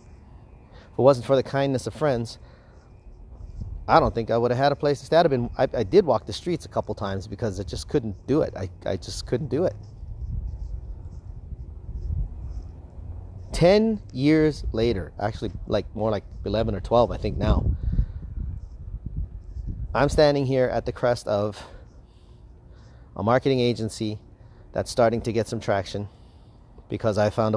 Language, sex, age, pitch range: English, male, 30-49, 90-120 Hz